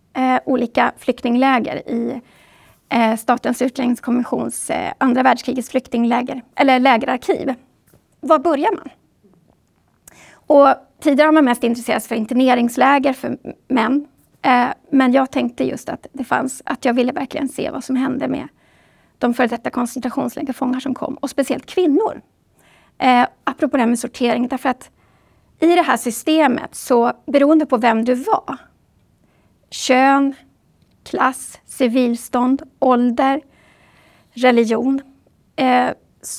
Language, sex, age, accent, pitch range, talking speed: Swedish, female, 30-49, native, 245-290 Hz, 125 wpm